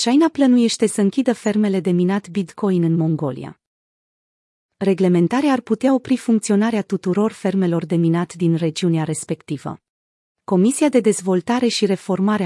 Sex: female